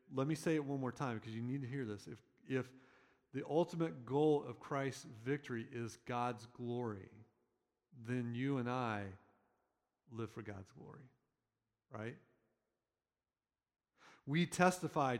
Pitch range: 120-155 Hz